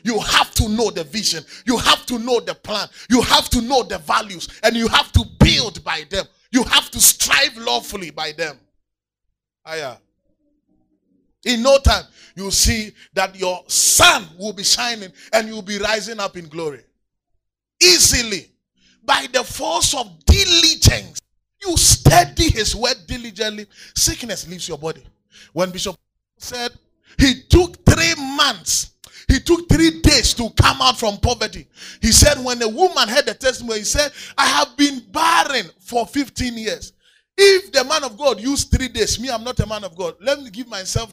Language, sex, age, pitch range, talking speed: English, male, 30-49, 180-260 Hz, 175 wpm